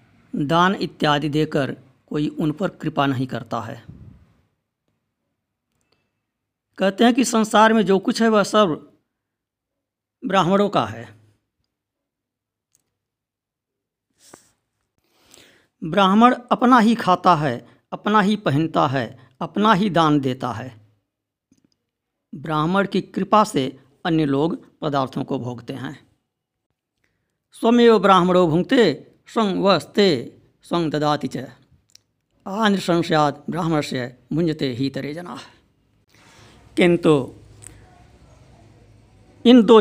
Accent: native